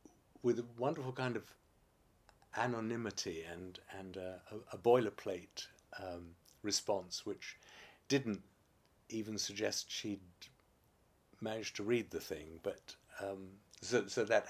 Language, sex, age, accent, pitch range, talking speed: English, male, 50-69, British, 95-125 Hz, 115 wpm